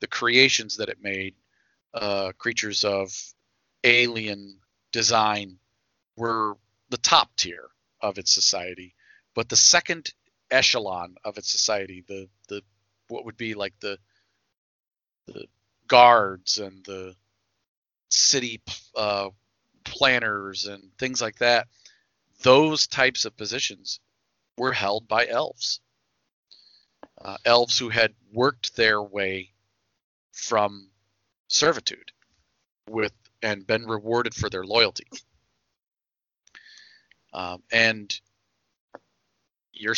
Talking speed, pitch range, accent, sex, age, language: 105 wpm, 100-120 Hz, American, male, 40-59, English